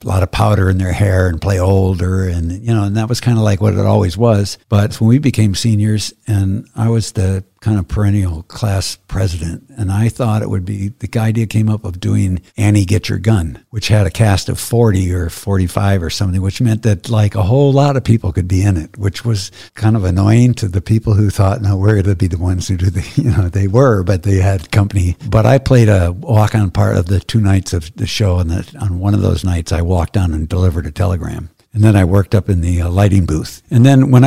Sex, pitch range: male, 95-110 Hz